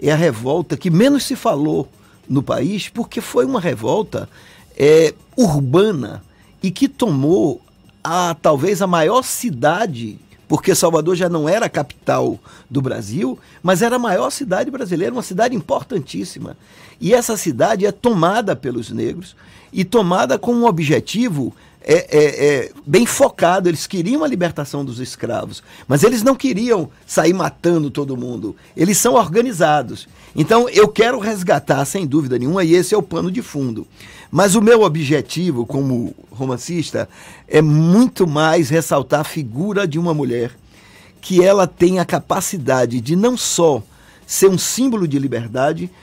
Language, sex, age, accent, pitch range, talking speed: Portuguese, male, 50-69, Brazilian, 150-210 Hz, 150 wpm